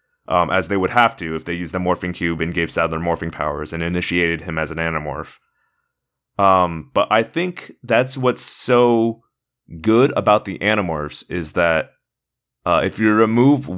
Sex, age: male, 20-39